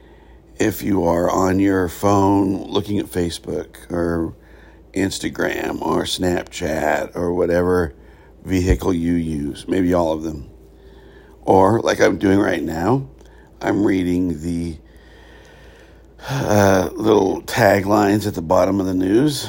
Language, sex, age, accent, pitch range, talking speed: English, male, 60-79, American, 80-100 Hz, 125 wpm